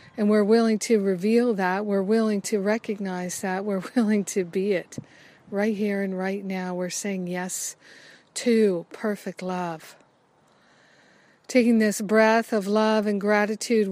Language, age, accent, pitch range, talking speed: English, 50-69, American, 195-220 Hz, 145 wpm